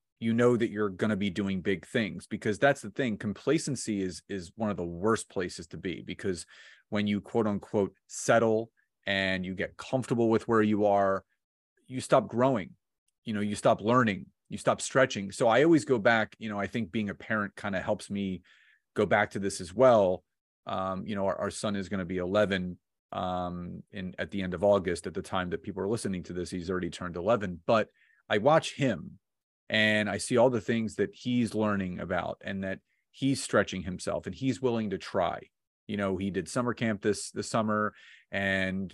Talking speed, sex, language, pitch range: 210 wpm, male, English, 95-120 Hz